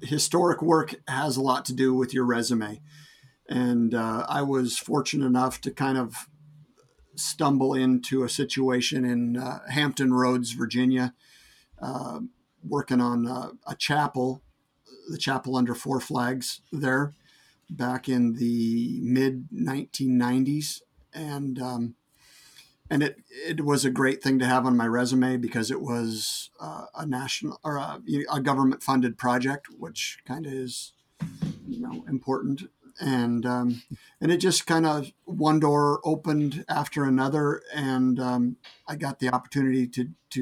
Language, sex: English, male